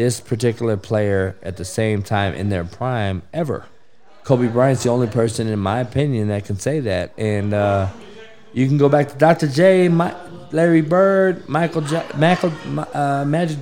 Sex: male